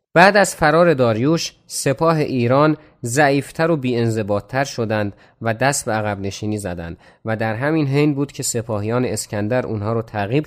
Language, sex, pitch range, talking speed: Persian, male, 110-150 Hz, 155 wpm